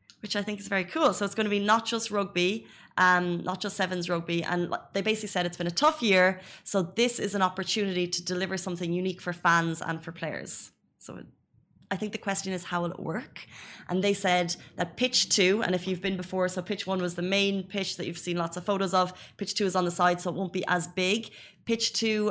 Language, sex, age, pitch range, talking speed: Arabic, female, 20-39, 180-210 Hz, 245 wpm